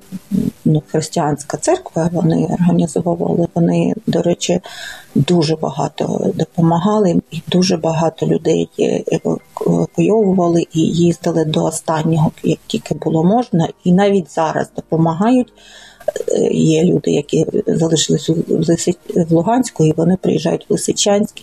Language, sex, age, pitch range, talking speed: Ukrainian, female, 30-49, 165-235 Hz, 110 wpm